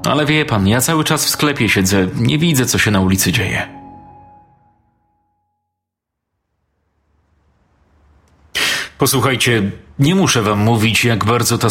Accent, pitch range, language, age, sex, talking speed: native, 95-115 Hz, Polish, 30-49, male, 125 wpm